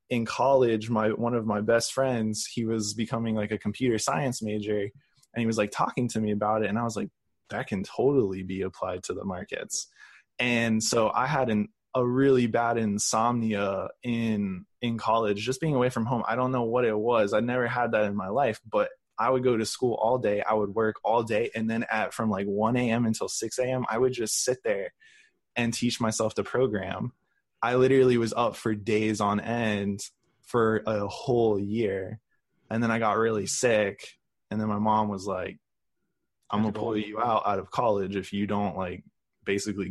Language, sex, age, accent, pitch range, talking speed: English, male, 20-39, American, 105-125 Hz, 205 wpm